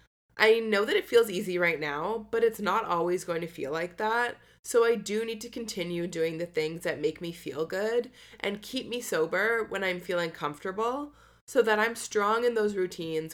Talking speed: 205 wpm